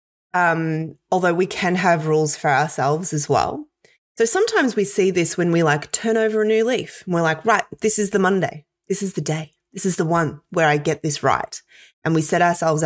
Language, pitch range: English, 150-205 Hz